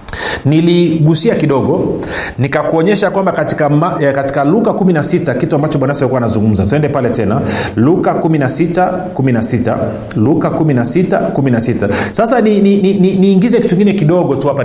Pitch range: 145-190 Hz